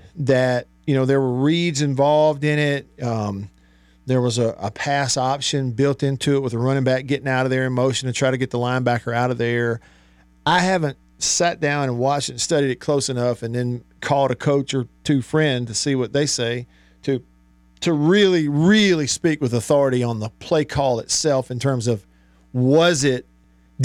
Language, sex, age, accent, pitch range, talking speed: English, male, 50-69, American, 115-150 Hz, 205 wpm